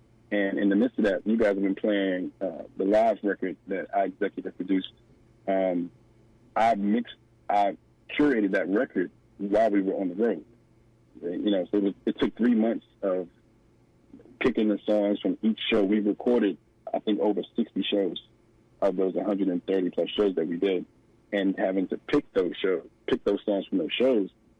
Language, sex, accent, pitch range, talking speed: English, male, American, 100-110 Hz, 190 wpm